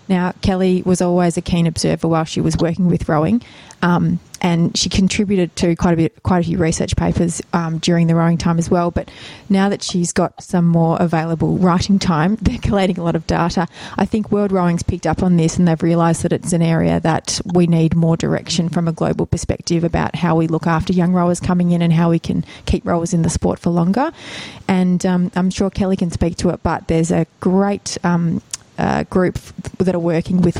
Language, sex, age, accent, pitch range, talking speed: English, female, 20-39, Australian, 165-190 Hz, 220 wpm